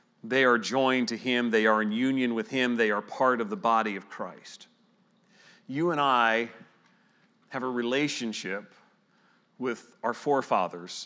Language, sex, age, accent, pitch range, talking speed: English, male, 40-59, American, 110-145 Hz, 150 wpm